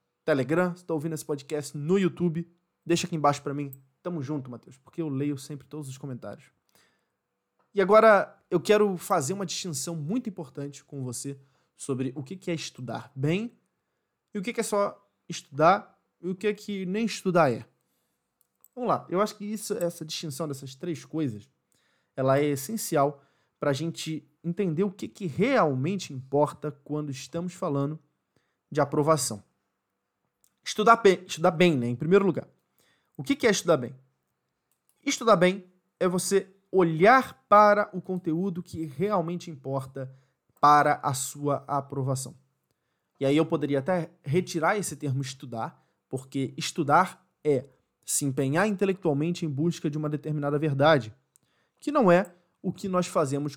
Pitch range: 140-180 Hz